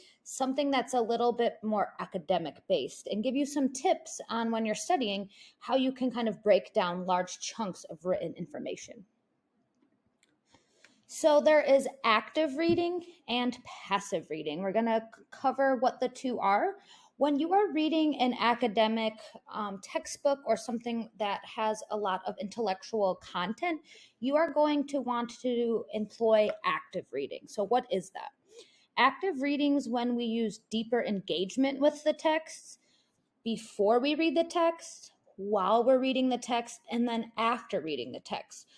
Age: 20-39